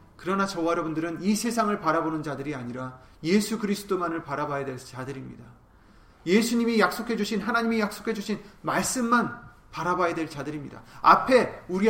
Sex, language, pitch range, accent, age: male, Korean, 140-215 Hz, native, 40-59